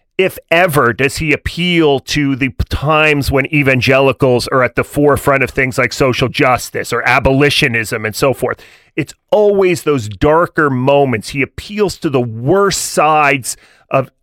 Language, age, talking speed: English, 40-59, 150 wpm